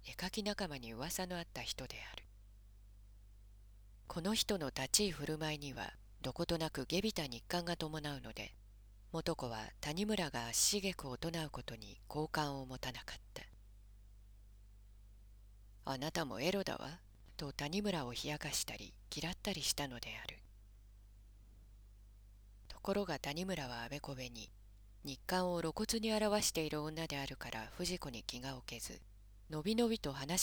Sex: female